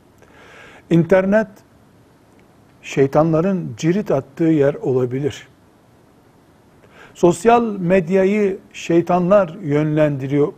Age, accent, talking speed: 60-79, native, 55 wpm